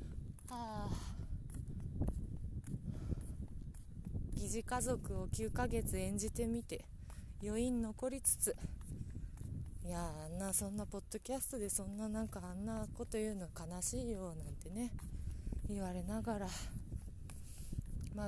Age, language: 20-39, Japanese